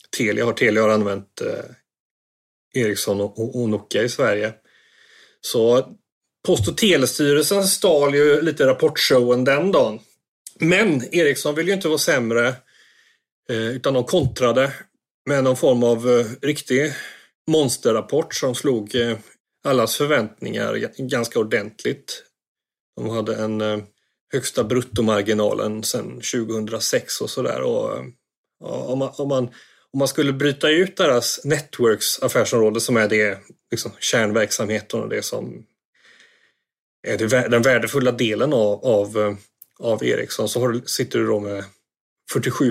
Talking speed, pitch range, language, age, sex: 130 wpm, 110-135 Hz, Swedish, 30-49, male